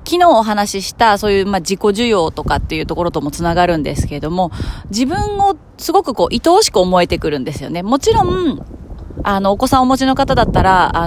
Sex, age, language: female, 30-49, Japanese